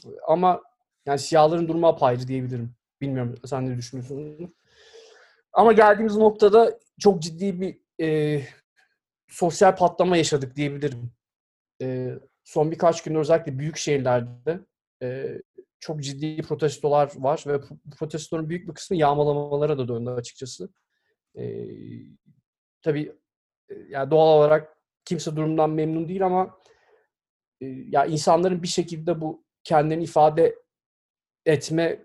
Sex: male